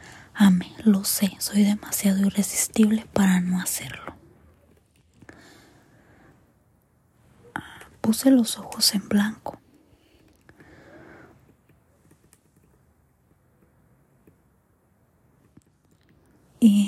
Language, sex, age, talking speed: Spanish, female, 20-39, 55 wpm